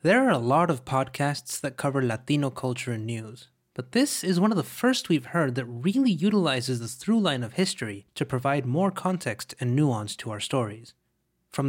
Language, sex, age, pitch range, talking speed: English, male, 20-39, 125-175 Hz, 200 wpm